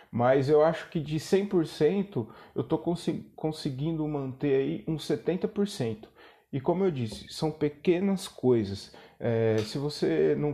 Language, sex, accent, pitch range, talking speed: Portuguese, male, Brazilian, 130-165 Hz, 140 wpm